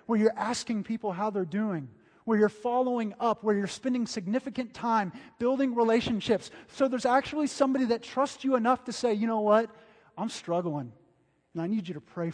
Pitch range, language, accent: 170-250 Hz, English, American